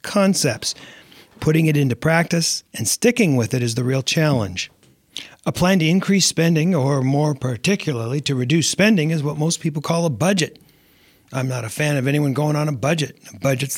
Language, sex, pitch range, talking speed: English, male, 130-160 Hz, 185 wpm